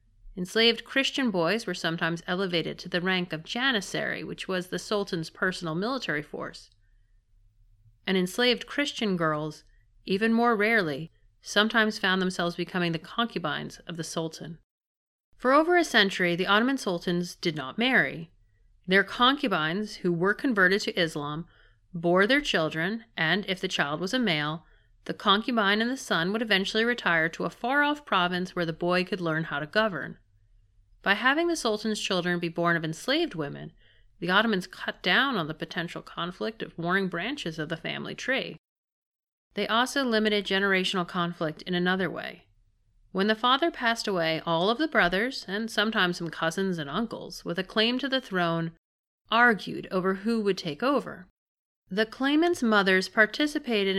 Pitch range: 165-225 Hz